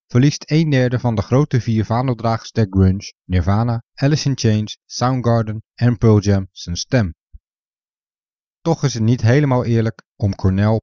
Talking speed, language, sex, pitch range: 155 wpm, Dutch, male, 100-130 Hz